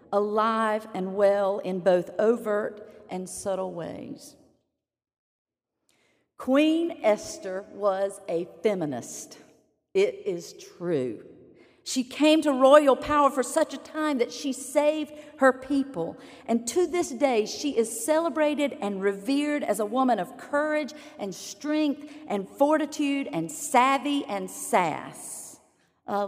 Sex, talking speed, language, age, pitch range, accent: female, 125 wpm, English, 40-59, 215-290 Hz, American